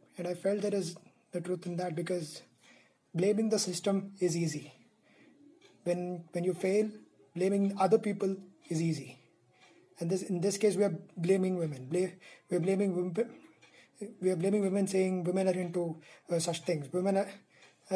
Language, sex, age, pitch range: English, male, 20-39, 175-190 Hz